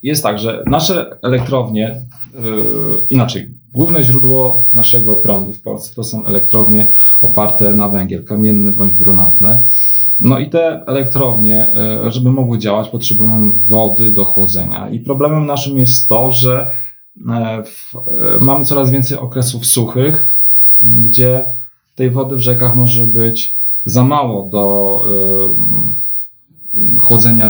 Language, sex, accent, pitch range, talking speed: Polish, male, native, 105-125 Hz, 120 wpm